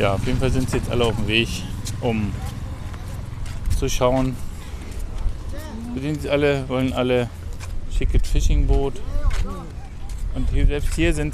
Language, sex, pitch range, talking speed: German, male, 85-130 Hz, 140 wpm